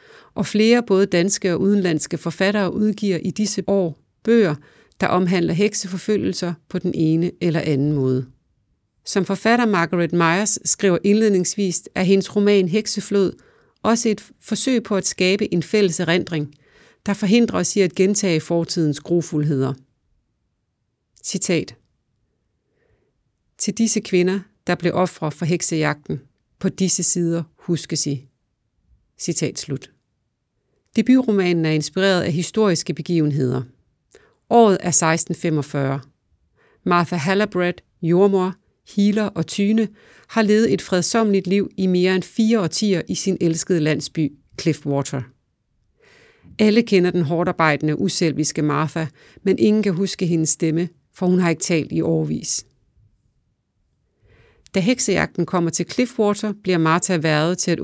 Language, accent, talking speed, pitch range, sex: English, Danish, 125 wpm, 155-200 Hz, female